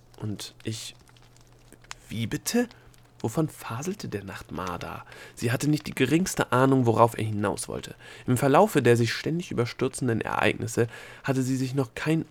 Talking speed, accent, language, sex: 150 wpm, German, German, male